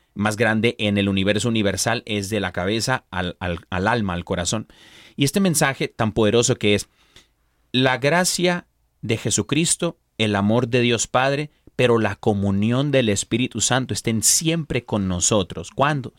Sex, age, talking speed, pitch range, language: male, 30-49, 155 wpm, 105-135 Hz, Spanish